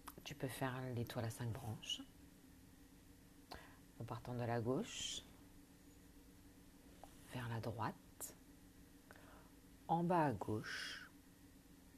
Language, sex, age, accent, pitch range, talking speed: French, female, 50-69, French, 95-135 Hz, 95 wpm